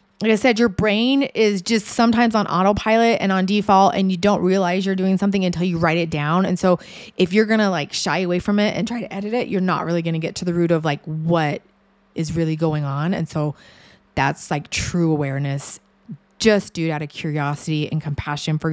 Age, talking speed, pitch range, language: 20-39, 230 wpm, 160-205 Hz, English